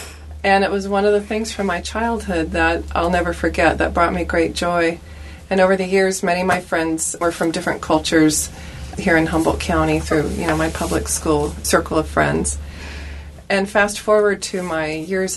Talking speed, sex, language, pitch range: 195 wpm, female, English, 160-195 Hz